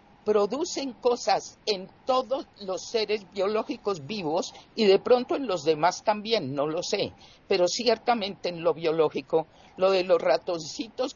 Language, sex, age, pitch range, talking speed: Spanish, male, 50-69, 165-225 Hz, 145 wpm